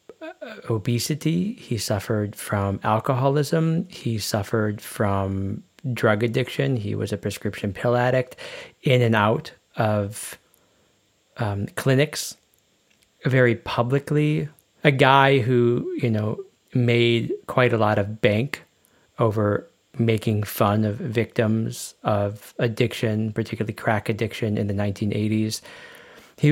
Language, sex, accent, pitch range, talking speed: English, male, American, 105-120 Hz, 110 wpm